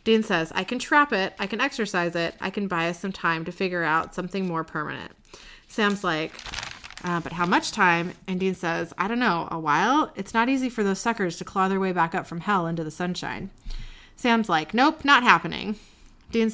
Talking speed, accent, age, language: 220 wpm, American, 30-49, English